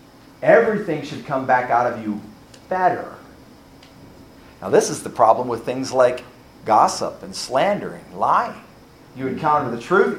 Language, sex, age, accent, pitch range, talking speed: English, male, 40-59, American, 150-230 Hz, 145 wpm